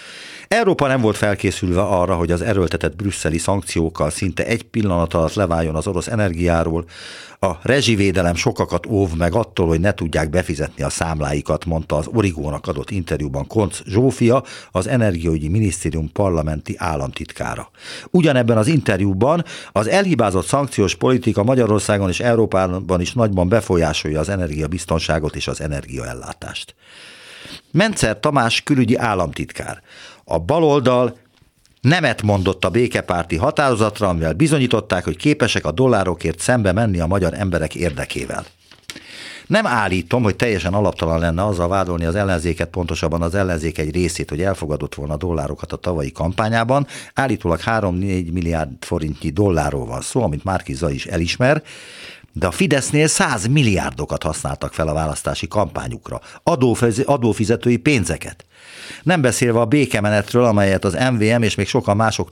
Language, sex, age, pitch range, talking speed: Hungarian, male, 50-69, 85-120 Hz, 135 wpm